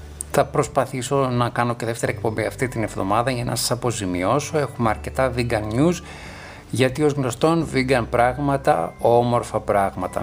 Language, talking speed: Greek, 145 wpm